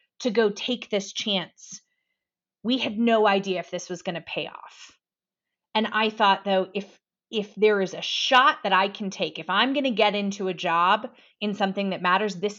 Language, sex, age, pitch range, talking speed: English, female, 30-49, 185-225 Hz, 205 wpm